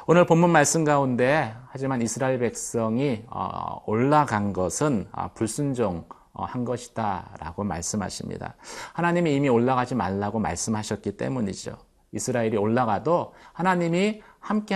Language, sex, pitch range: Korean, male, 105-150 Hz